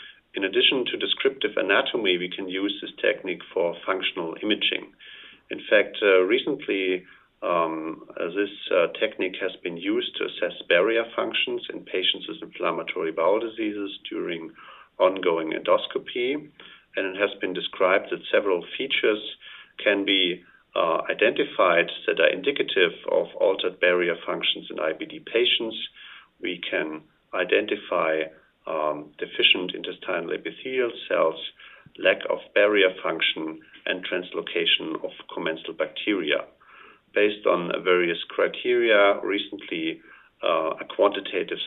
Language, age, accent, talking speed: English, 50-69, German, 120 wpm